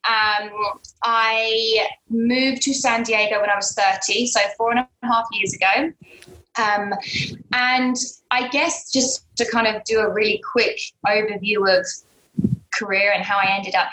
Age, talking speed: 20-39, 160 wpm